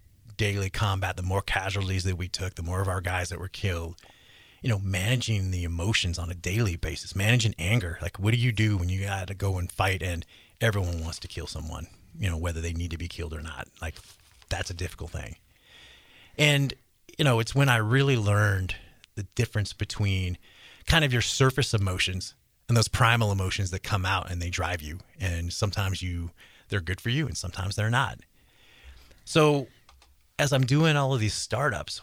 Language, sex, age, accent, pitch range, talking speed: English, male, 30-49, American, 90-115 Hz, 200 wpm